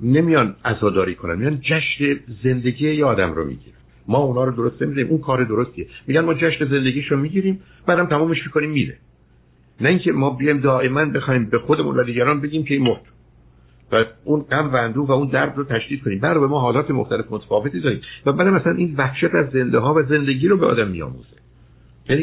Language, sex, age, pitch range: Persian, male, 60-79, 115-155 Hz